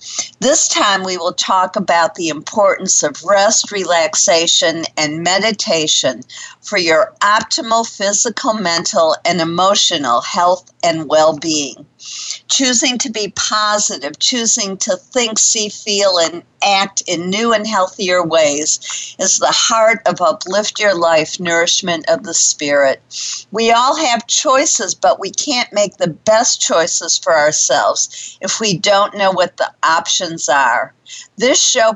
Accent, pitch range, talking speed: American, 170-220 Hz, 135 wpm